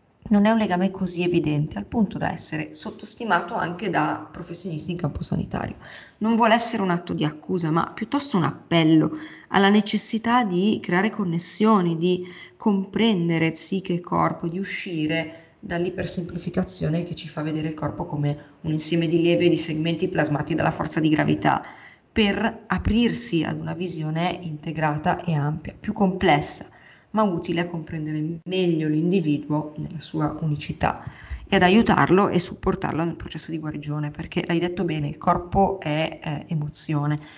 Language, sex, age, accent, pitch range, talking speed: Italian, female, 30-49, native, 155-190 Hz, 155 wpm